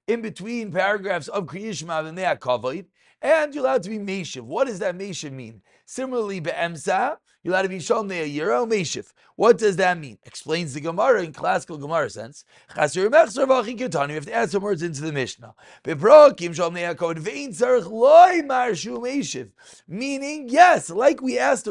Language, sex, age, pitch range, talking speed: English, male, 30-49, 155-235 Hz, 150 wpm